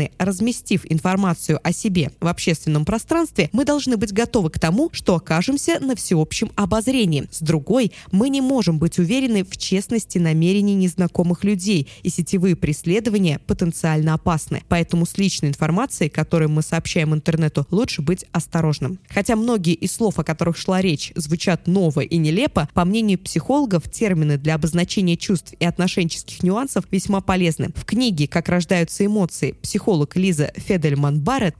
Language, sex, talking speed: Russian, female, 150 wpm